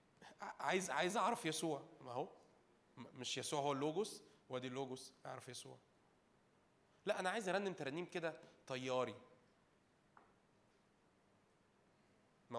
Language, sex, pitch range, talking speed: Arabic, male, 125-175 Hz, 105 wpm